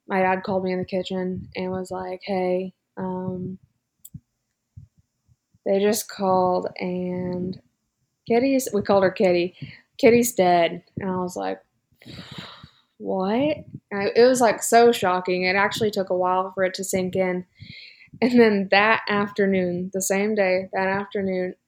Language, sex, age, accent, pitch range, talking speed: English, female, 20-39, American, 185-205 Hz, 145 wpm